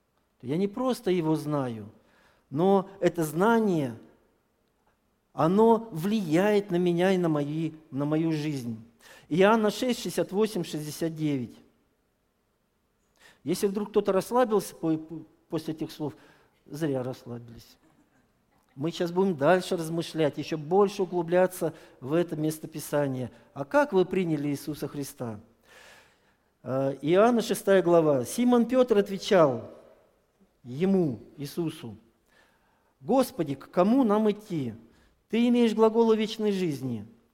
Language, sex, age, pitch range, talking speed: Russian, male, 50-69, 150-200 Hz, 105 wpm